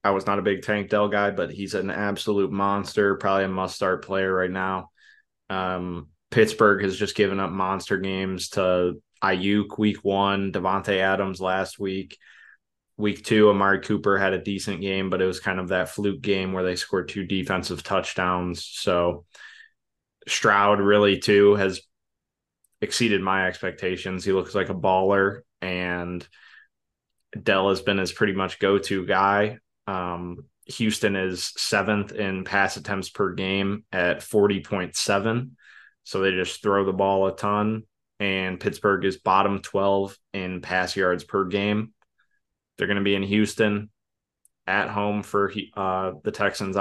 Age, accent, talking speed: 20-39, American, 155 wpm